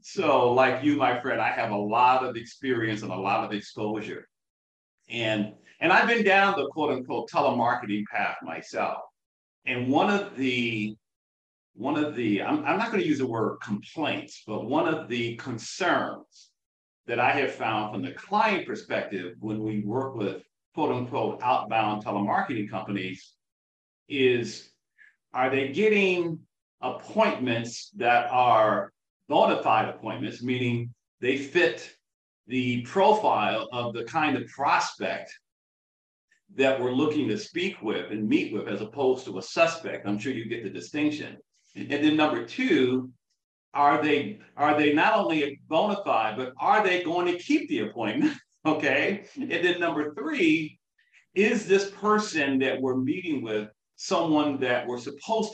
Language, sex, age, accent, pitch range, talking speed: English, male, 50-69, American, 110-175 Hz, 150 wpm